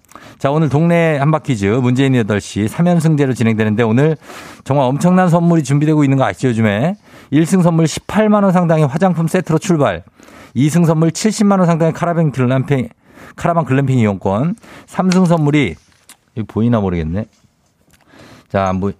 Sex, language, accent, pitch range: male, Korean, native, 110-160 Hz